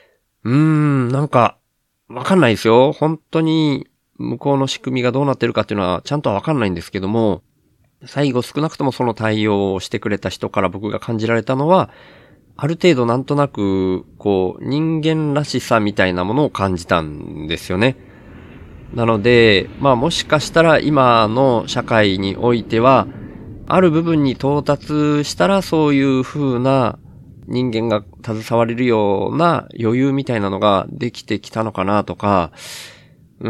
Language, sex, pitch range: Japanese, male, 105-145 Hz